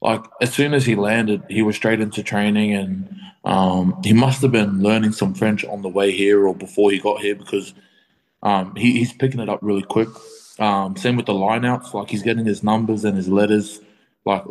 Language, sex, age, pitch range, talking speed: English, male, 20-39, 95-110 Hz, 215 wpm